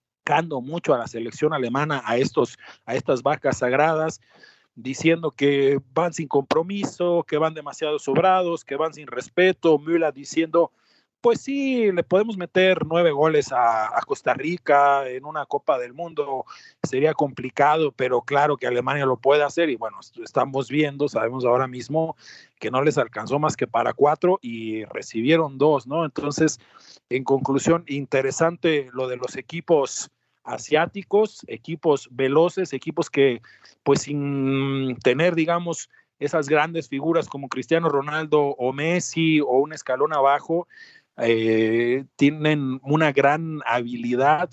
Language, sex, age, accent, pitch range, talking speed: Spanish, male, 40-59, Mexican, 125-165 Hz, 140 wpm